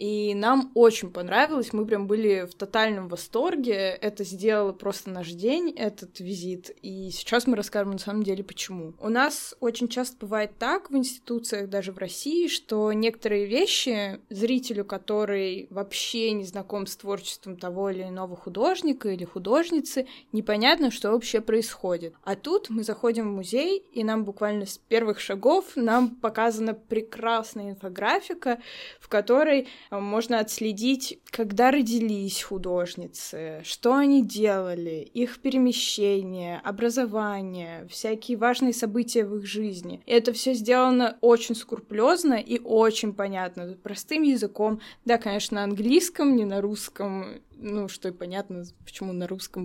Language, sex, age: Russian, female, 20-39